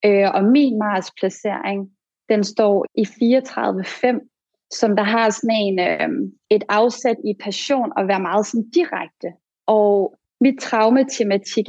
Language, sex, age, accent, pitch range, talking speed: Danish, female, 30-49, native, 200-240 Hz, 125 wpm